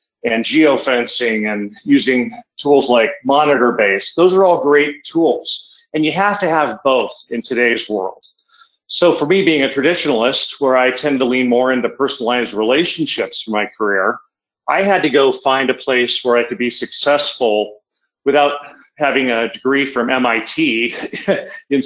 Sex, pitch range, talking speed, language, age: male, 120-150 Hz, 160 wpm, English, 40-59